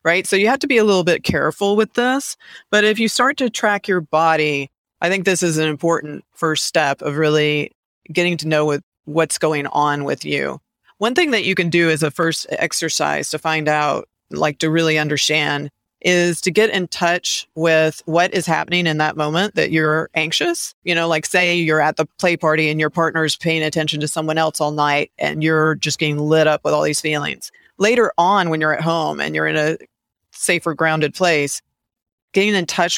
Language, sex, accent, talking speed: English, female, American, 210 wpm